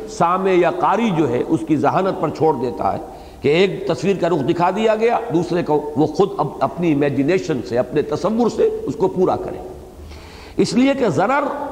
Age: 50-69